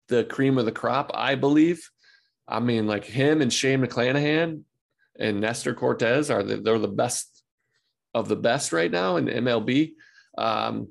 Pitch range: 115-135 Hz